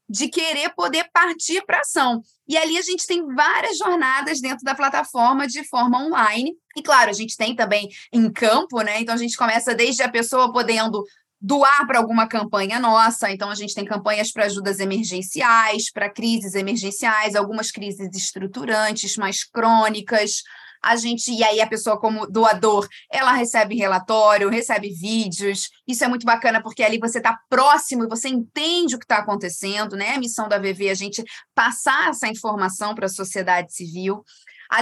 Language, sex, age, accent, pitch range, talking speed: Portuguese, female, 20-39, Brazilian, 215-265 Hz, 175 wpm